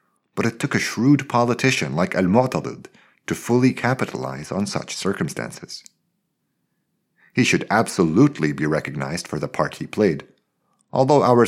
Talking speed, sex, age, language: 135 wpm, male, 50-69, English